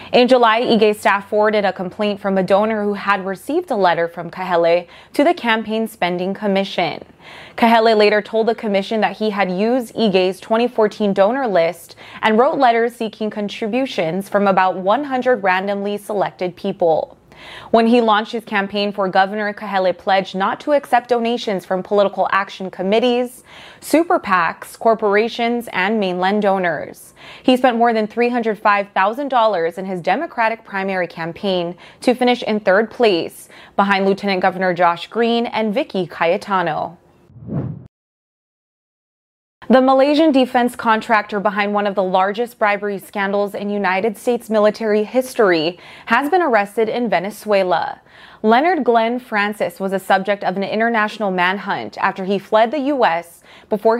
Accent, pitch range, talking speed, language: American, 195-230 Hz, 145 wpm, English